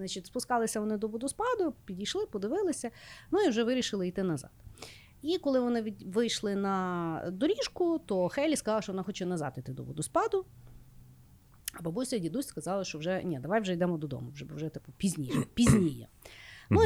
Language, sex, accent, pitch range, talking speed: Ukrainian, female, native, 155-245 Hz, 170 wpm